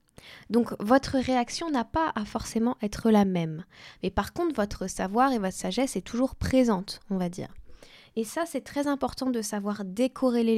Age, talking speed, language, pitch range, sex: 10-29, 180 wpm, French, 210-260 Hz, female